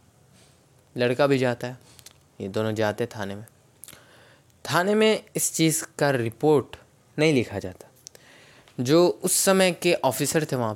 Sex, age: male, 20-39